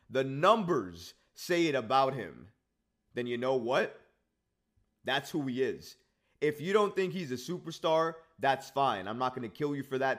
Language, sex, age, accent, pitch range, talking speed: English, male, 30-49, American, 120-160 Hz, 185 wpm